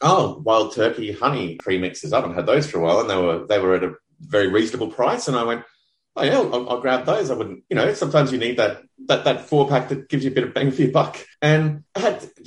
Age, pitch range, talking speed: 30-49, 110-145 Hz, 280 wpm